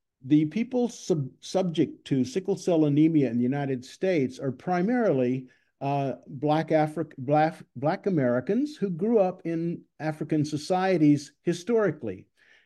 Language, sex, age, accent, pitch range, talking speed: English, male, 50-69, American, 130-170 Hz, 130 wpm